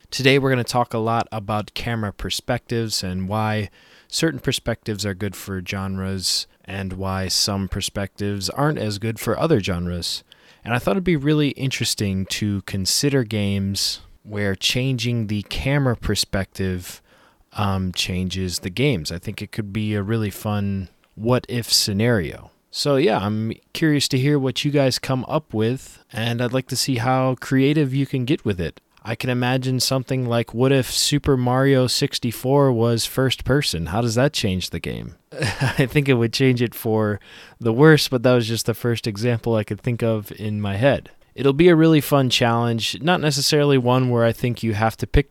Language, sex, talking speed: English, male, 185 wpm